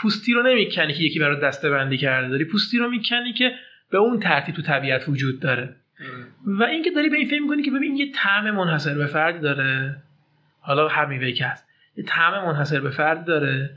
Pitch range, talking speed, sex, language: 150-235 Hz, 200 wpm, male, Persian